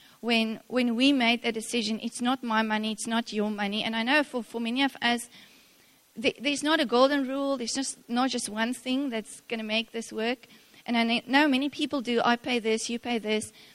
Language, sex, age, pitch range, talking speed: English, female, 30-49, 215-250 Hz, 250 wpm